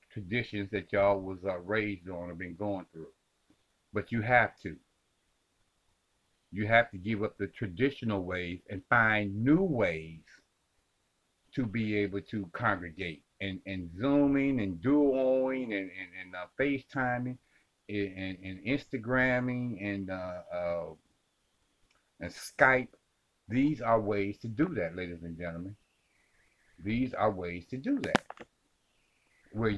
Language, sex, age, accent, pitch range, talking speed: English, male, 50-69, American, 100-130 Hz, 135 wpm